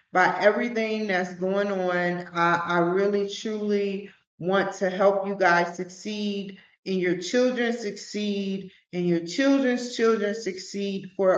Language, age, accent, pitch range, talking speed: English, 40-59, American, 190-250 Hz, 130 wpm